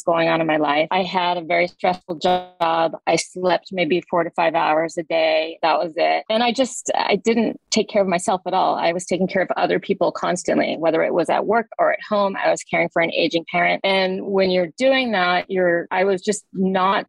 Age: 30-49